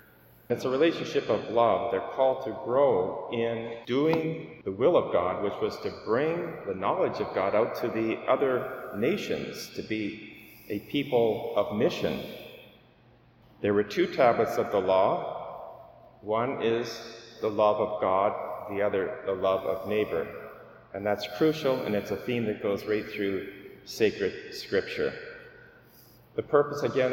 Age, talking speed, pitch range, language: 40-59, 155 wpm, 105-160 Hz, English